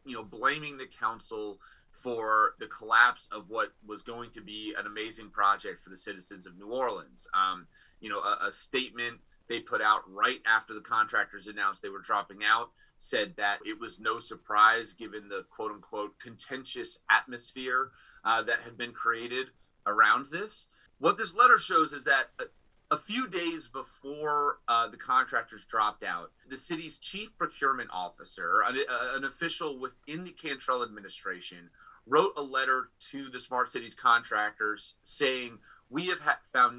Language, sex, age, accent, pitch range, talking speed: English, male, 30-49, American, 110-150 Hz, 160 wpm